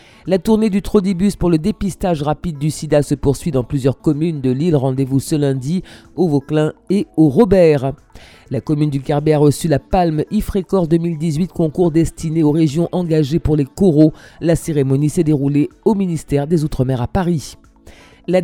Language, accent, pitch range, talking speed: French, French, 135-175 Hz, 175 wpm